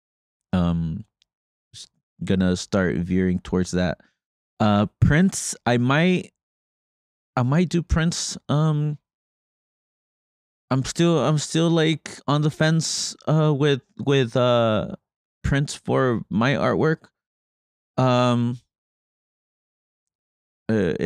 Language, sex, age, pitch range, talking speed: English, male, 20-39, 95-130 Hz, 95 wpm